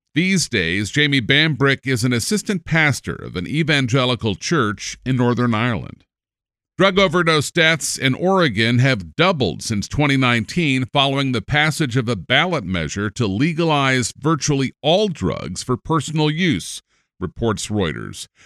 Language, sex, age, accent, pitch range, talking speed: English, male, 50-69, American, 115-155 Hz, 135 wpm